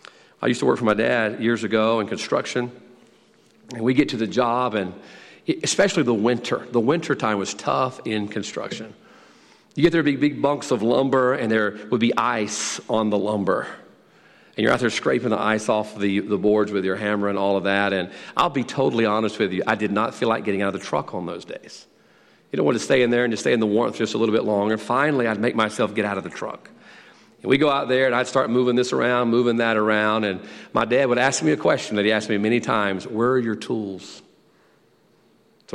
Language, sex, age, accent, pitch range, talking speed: English, male, 40-59, American, 110-165 Hz, 235 wpm